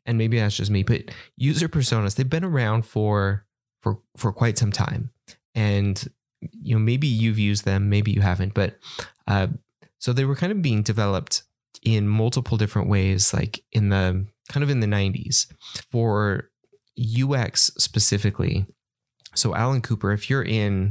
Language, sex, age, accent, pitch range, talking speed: English, male, 20-39, American, 105-125 Hz, 165 wpm